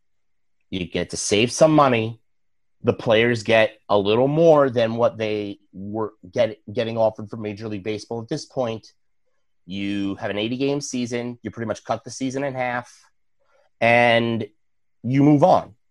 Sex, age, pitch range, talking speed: male, 30-49, 110-140 Hz, 160 wpm